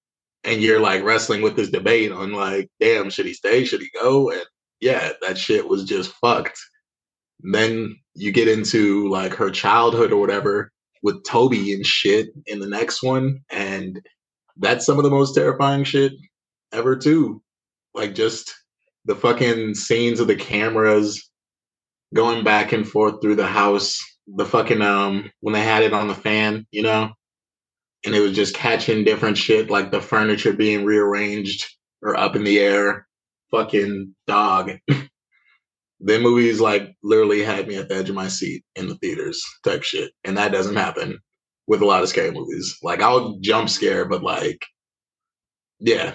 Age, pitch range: 20-39, 100-140 Hz